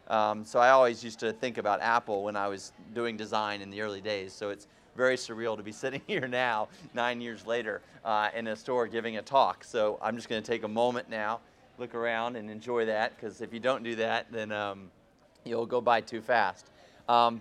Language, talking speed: English, 225 wpm